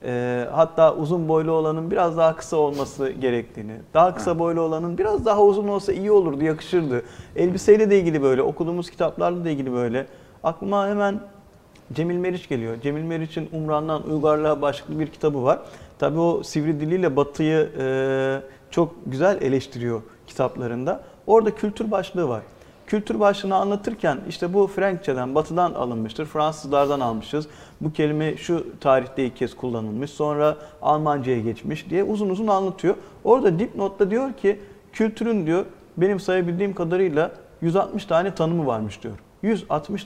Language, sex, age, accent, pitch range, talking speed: Turkish, male, 40-59, native, 140-190 Hz, 140 wpm